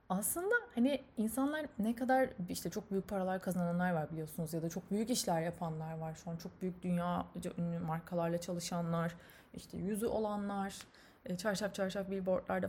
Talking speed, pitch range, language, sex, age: 155 wpm, 170-230 Hz, Turkish, female, 20-39